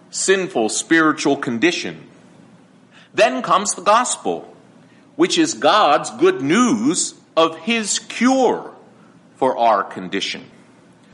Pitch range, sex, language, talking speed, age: 150-250 Hz, male, English, 95 wpm, 50-69